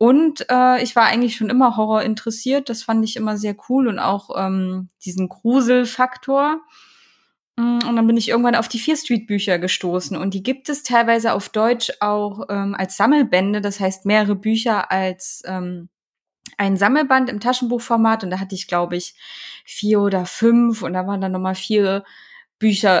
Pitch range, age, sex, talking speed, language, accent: 190-235 Hz, 20-39, female, 170 wpm, German, German